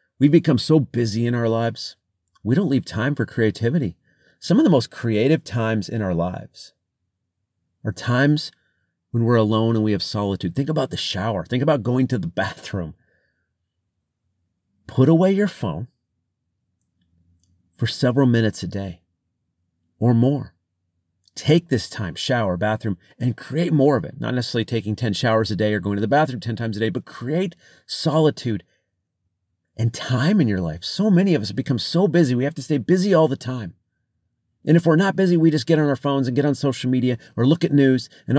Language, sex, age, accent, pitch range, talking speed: English, male, 40-59, American, 100-140 Hz, 190 wpm